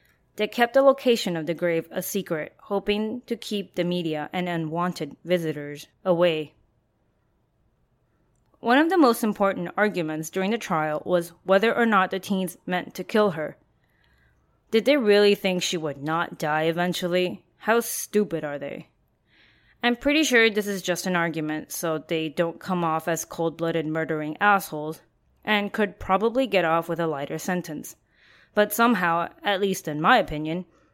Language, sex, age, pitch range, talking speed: English, female, 20-39, 165-210 Hz, 160 wpm